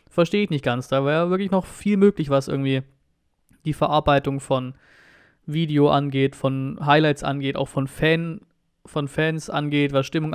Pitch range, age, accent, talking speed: 140-175 Hz, 20-39, German, 155 wpm